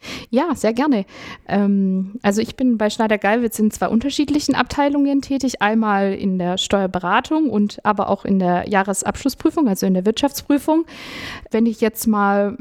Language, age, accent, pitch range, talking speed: German, 50-69, German, 200-245 Hz, 155 wpm